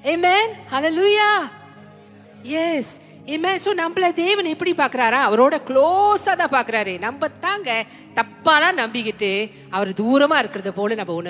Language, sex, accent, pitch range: Tamil, female, native, 230-345 Hz